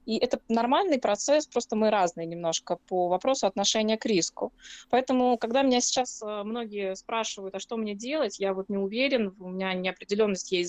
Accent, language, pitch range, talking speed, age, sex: native, Russian, 195-240 Hz, 175 wpm, 20-39, female